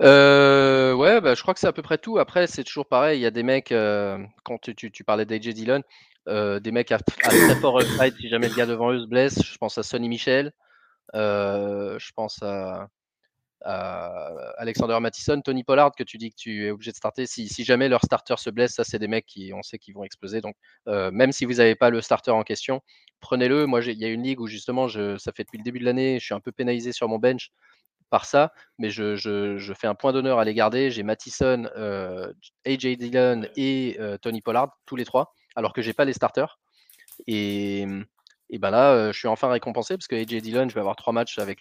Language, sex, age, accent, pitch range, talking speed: French, male, 20-39, French, 105-130 Hz, 240 wpm